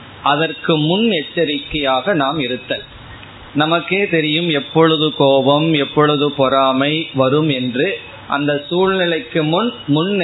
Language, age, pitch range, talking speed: Tamil, 20-39, 130-160 Hz, 100 wpm